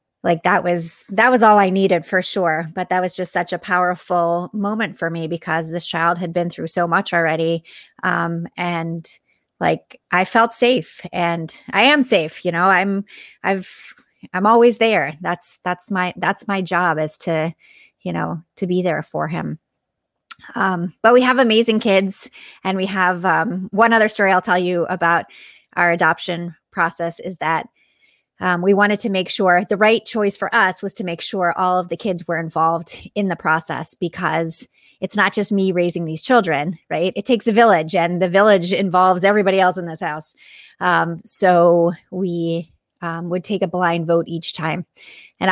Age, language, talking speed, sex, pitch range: 30-49, English, 185 wpm, female, 170-195 Hz